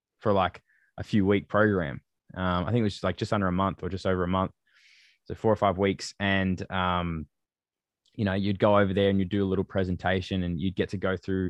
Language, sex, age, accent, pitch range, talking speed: English, male, 20-39, Australian, 90-105 Hz, 255 wpm